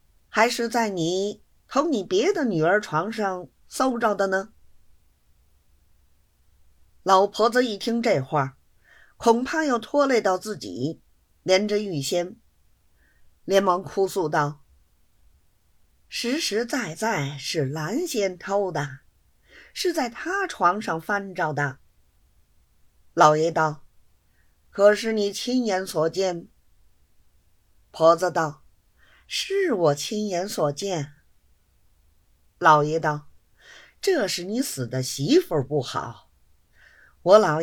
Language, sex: Chinese, female